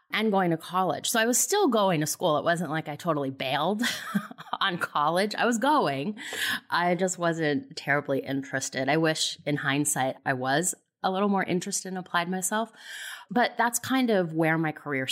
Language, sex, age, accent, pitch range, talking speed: English, female, 30-49, American, 150-190 Hz, 185 wpm